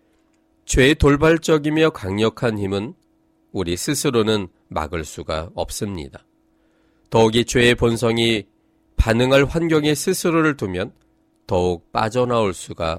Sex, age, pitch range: male, 40-59, 100-145 Hz